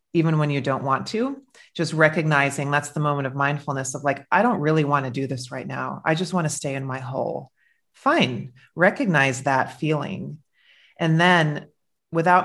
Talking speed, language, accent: 190 wpm, English, American